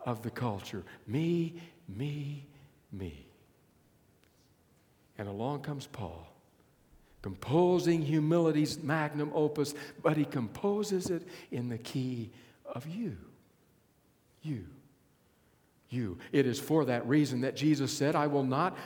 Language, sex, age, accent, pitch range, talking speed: English, male, 60-79, American, 120-170 Hz, 115 wpm